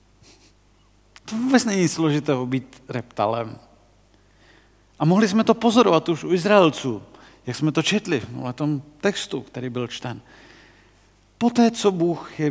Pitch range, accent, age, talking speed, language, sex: 135-180 Hz, native, 40-59, 135 wpm, Czech, male